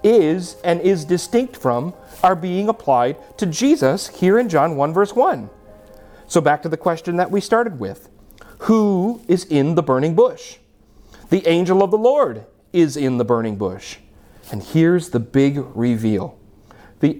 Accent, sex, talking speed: American, male, 165 wpm